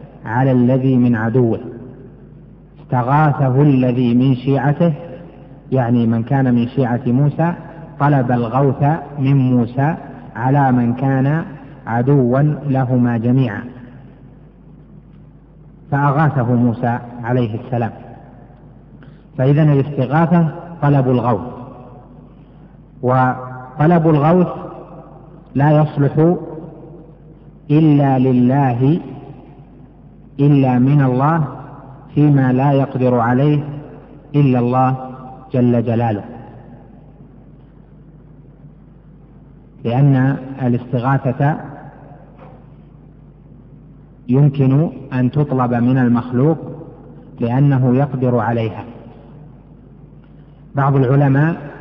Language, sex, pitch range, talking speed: Arabic, male, 125-150 Hz, 70 wpm